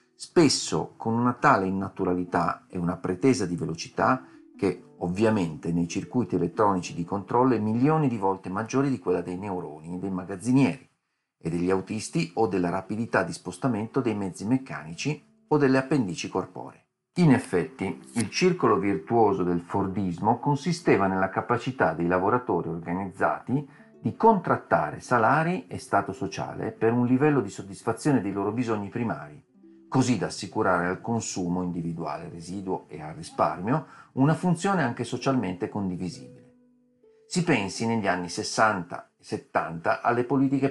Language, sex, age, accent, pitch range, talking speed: Italian, male, 40-59, native, 90-130 Hz, 140 wpm